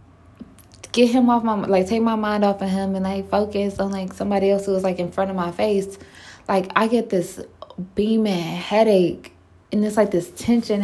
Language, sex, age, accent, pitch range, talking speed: English, female, 20-39, American, 175-235 Hz, 205 wpm